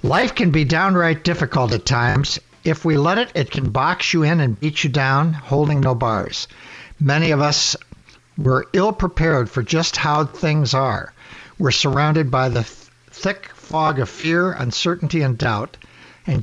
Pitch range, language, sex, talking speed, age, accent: 130-160 Hz, English, male, 165 wpm, 60-79, American